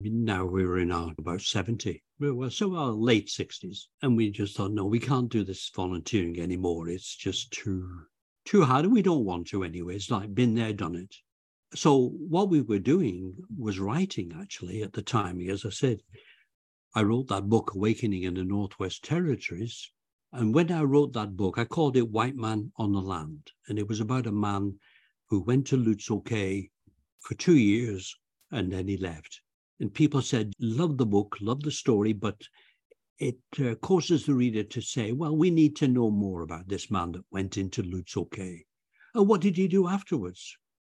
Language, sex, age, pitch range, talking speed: English, male, 60-79, 95-130 Hz, 195 wpm